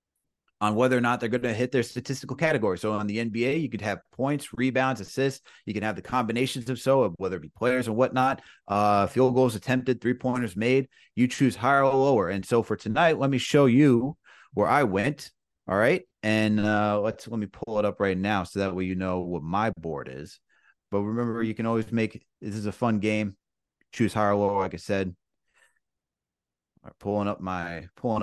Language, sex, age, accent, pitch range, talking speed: English, male, 30-49, American, 105-135 Hz, 215 wpm